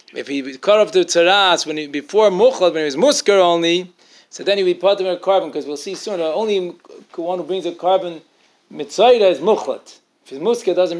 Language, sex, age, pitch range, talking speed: English, male, 40-59, 180-220 Hz, 220 wpm